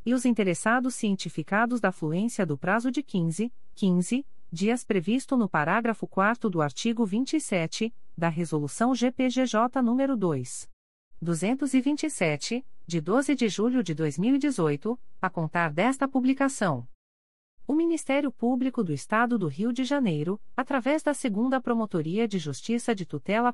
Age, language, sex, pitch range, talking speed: 40-59, Portuguese, female, 170-245 Hz, 130 wpm